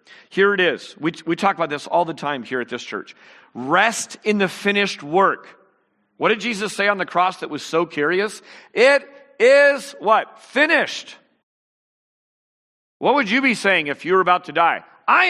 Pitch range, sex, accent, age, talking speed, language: 145-205 Hz, male, American, 50-69, 185 wpm, English